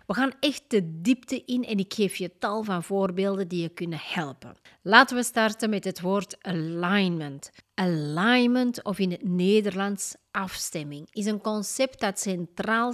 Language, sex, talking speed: Dutch, female, 160 wpm